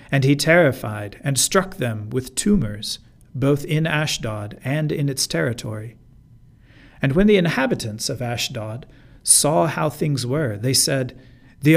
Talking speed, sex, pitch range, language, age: 145 wpm, male, 120-150 Hz, English, 50-69